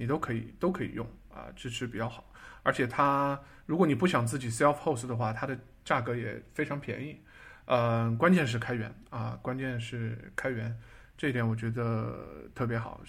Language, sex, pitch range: Chinese, male, 115-145 Hz